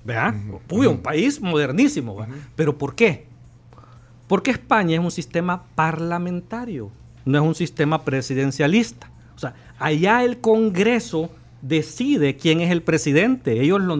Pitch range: 140-195 Hz